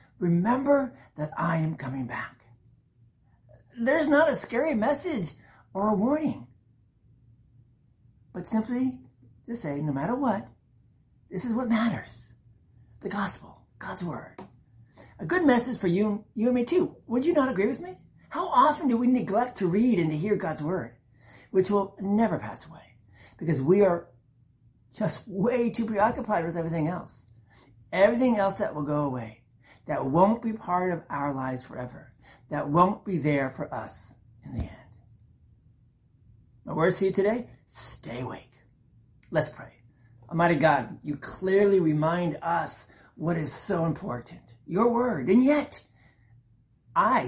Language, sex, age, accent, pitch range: Japanese, male, 50-69, American, 120-195 Hz